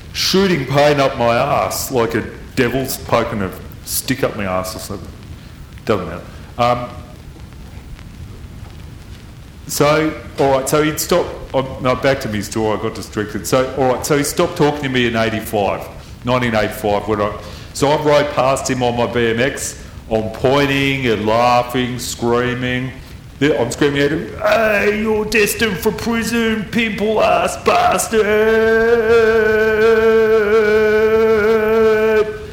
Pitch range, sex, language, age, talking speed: 110-155 Hz, male, English, 40-59, 135 wpm